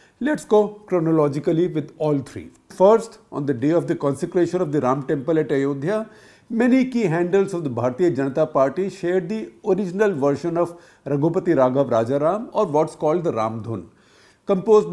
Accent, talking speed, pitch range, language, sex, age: Indian, 170 wpm, 140-185 Hz, English, male, 50-69